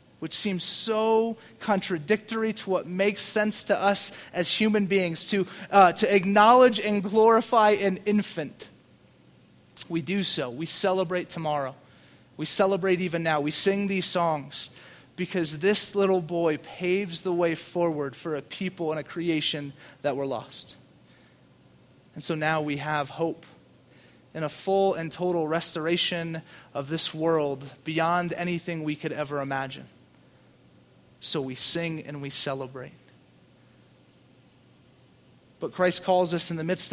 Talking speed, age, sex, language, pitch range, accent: 140 wpm, 30-49, male, English, 155-195 Hz, American